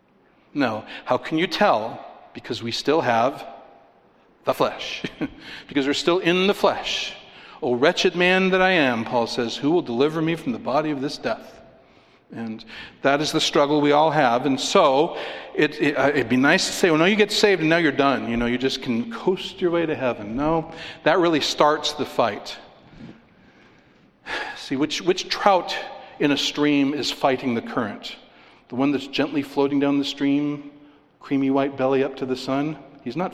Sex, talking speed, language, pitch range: male, 190 wpm, English, 125-165 Hz